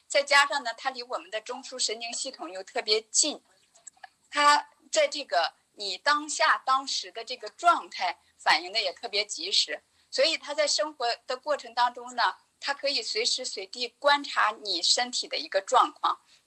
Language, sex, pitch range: Chinese, female, 235-305 Hz